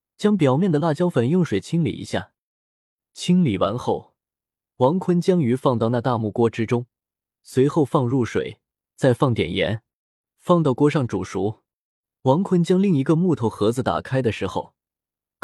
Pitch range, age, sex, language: 110-165 Hz, 20-39, male, Chinese